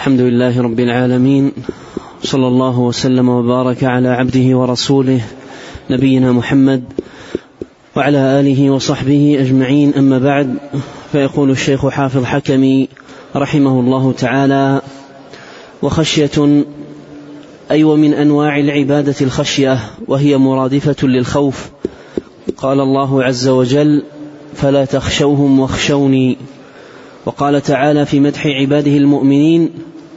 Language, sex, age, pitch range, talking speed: Arabic, male, 20-39, 135-150 Hz, 95 wpm